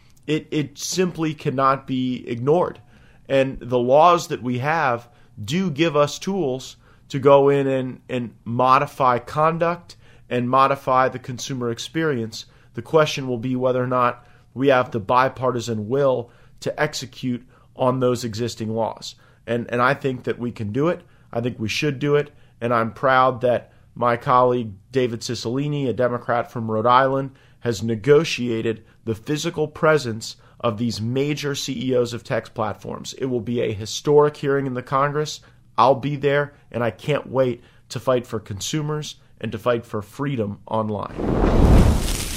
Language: English